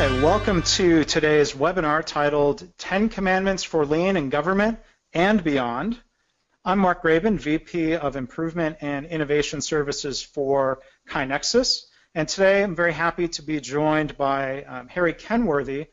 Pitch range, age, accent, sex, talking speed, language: 145-175 Hz, 40-59, American, male, 135 wpm, English